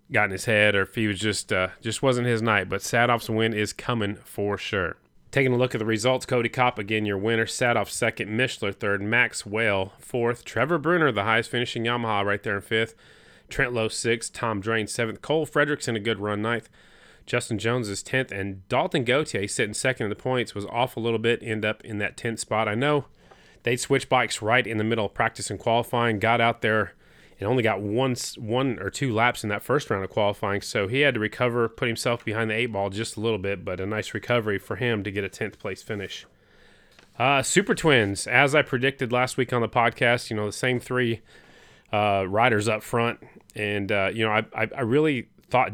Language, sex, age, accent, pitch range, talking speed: English, male, 30-49, American, 105-120 Hz, 225 wpm